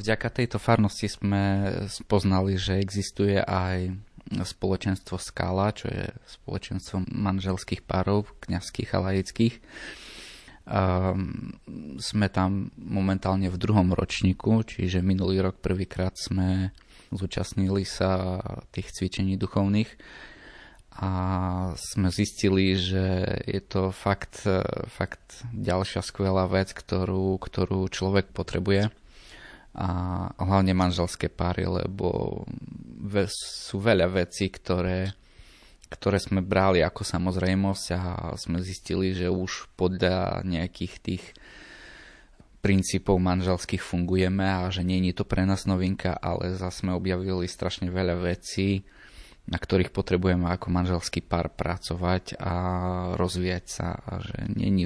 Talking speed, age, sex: 115 wpm, 20-39, male